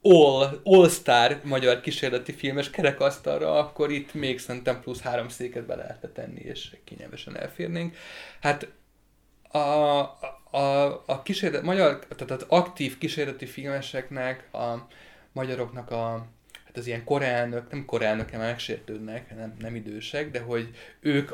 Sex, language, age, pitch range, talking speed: male, Hungarian, 30-49, 115-140 Hz, 130 wpm